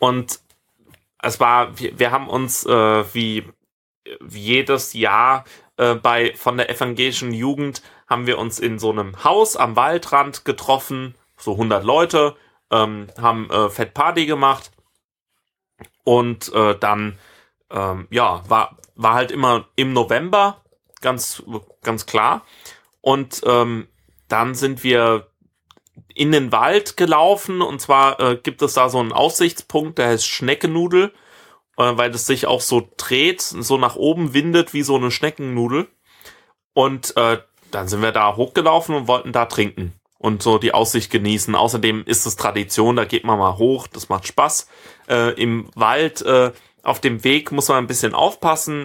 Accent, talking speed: German, 155 wpm